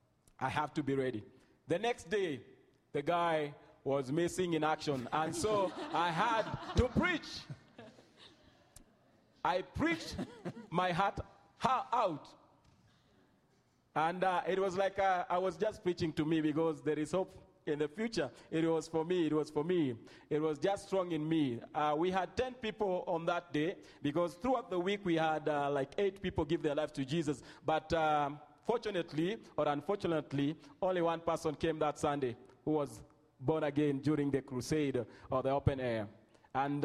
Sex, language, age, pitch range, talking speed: male, English, 40-59, 145-180 Hz, 170 wpm